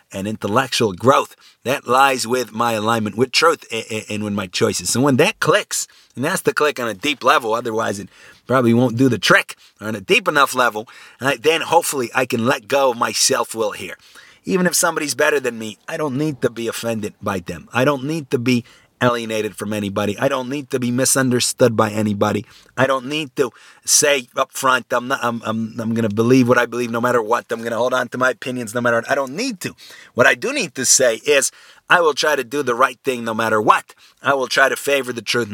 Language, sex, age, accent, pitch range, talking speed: English, male, 30-49, American, 115-140 Hz, 230 wpm